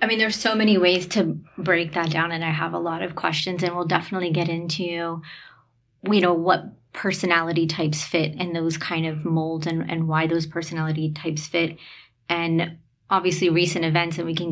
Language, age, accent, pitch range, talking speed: English, 30-49, American, 160-175 Hz, 195 wpm